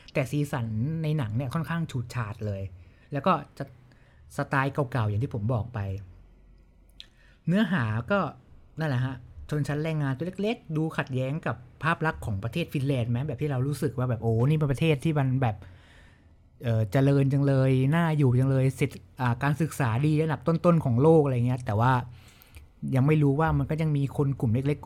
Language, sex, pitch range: Thai, male, 120-155 Hz